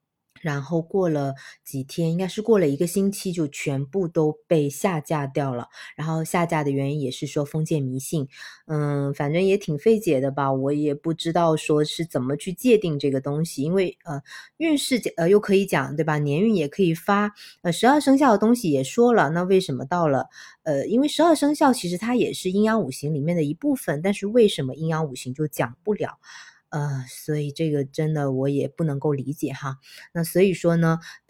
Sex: female